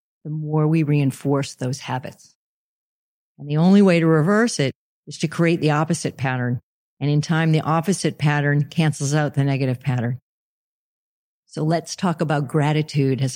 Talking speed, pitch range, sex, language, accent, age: 160 wpm, 140-170 Hz, female, English, American, 50-69